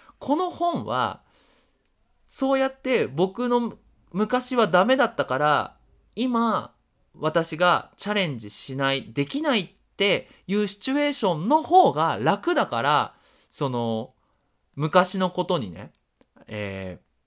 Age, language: 20-39, Japanese